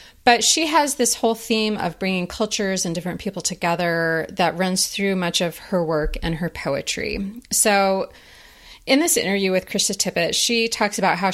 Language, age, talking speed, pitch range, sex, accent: English, 30-49, 180 wpm, 170-220 Hz, female, American